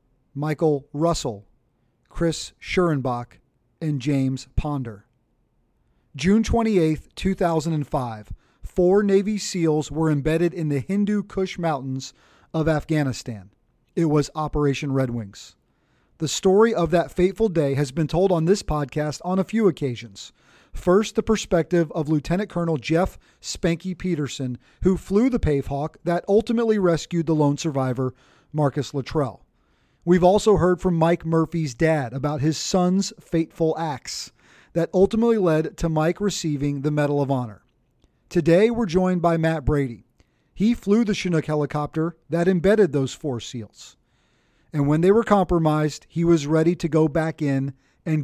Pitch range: 140-175 Hz